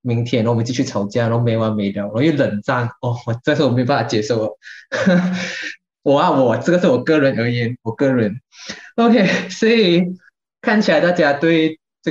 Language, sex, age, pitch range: Chinese, male, 20-39, 120-165 Hz